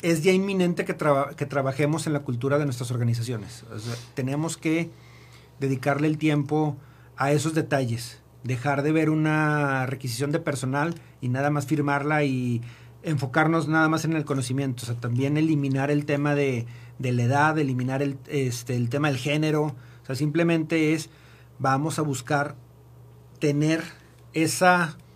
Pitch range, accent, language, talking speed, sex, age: 130-155 Hz, Mexican, Spanish, 160 wpm, male, 40-59